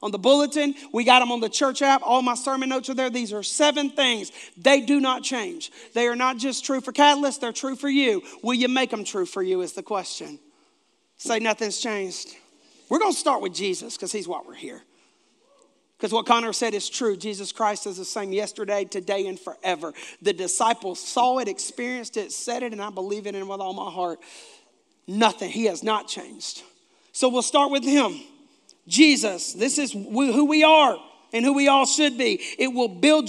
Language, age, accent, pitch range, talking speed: English, 40-59, American, 205-285 Hz, 210 wpm